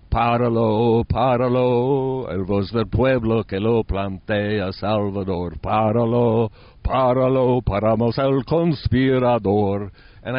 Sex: male